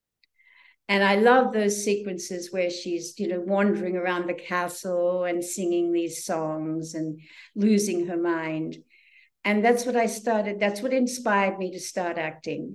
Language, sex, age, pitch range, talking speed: English, female, 60-79, 175-215 Hz, 155 wpm